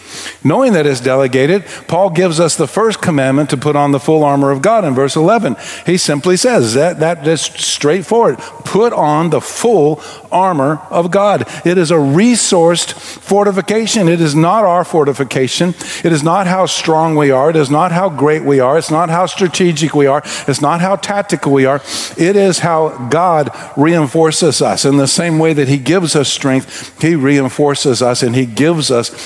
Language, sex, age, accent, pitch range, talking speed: English, male, 50-69, American, 135-180 Hz, 190 wpm